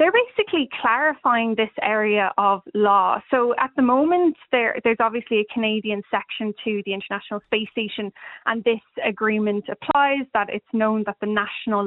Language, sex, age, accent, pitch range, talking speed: English, female, 20-39, Irish, 205-235 Hz, 155 wpm